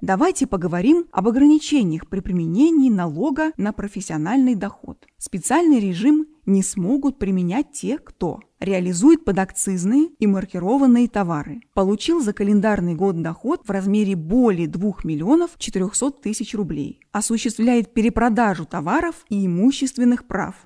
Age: 20-39